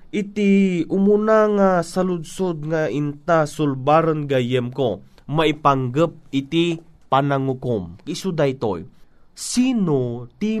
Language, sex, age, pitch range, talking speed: Filipino, male, 30-49, 130-180 Hz, 90 wpm